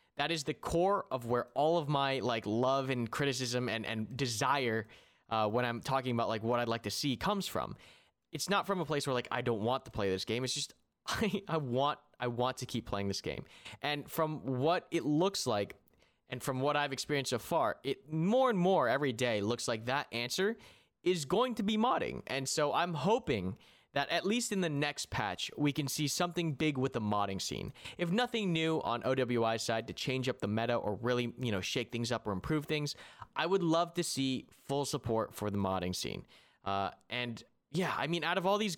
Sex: male